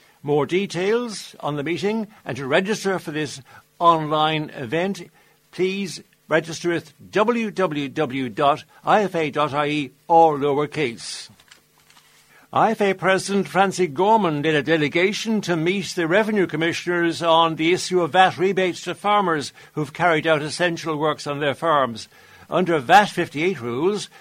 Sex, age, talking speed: male, 60-79, 125 wpm